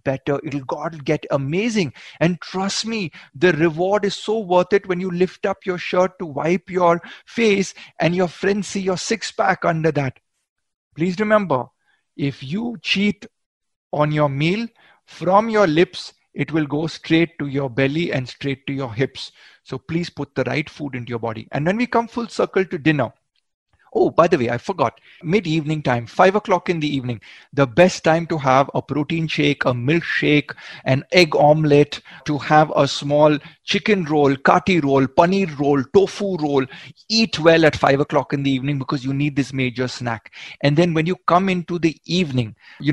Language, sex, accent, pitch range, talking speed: Hindi, male, native, 140-180 Hz, 190 wpm